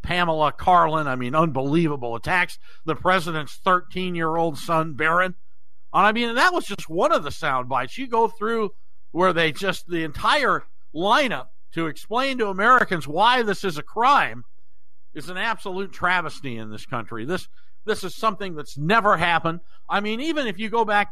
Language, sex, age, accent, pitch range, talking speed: English, male, 60-79, American, 155-230 Hz, 175 wpm